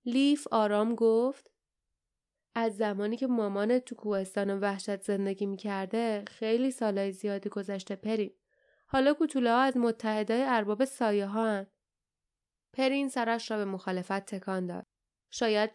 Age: 10-29